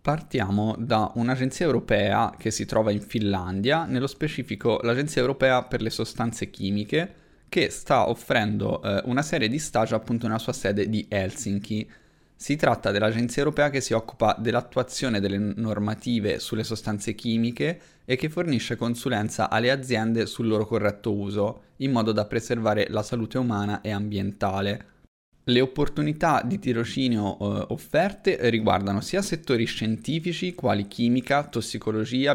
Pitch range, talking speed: 105-130 Hz, 140 wpm